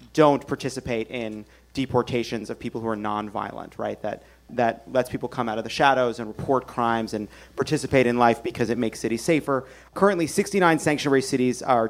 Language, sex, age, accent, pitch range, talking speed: English, male, 30-49, American, 120-145 Hz, 180 wpm